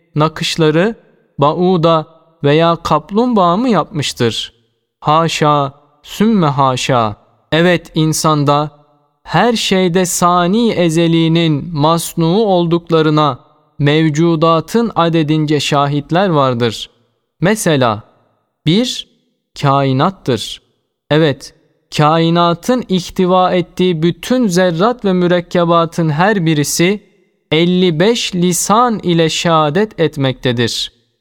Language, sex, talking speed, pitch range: Turkish, male, 75 wpm, 150-180 Hz